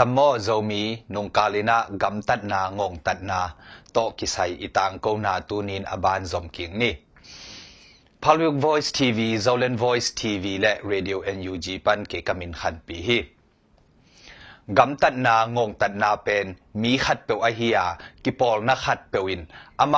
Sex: male